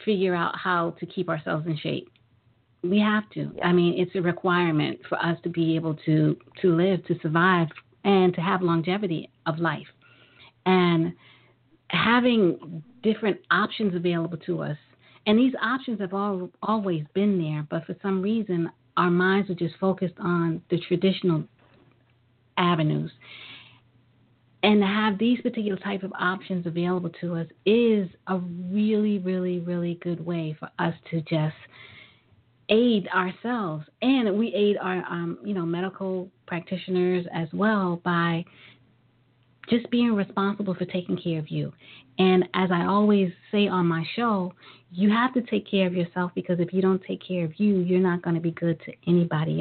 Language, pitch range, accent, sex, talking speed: English, 160-195 Hz, American, female, 165 wpm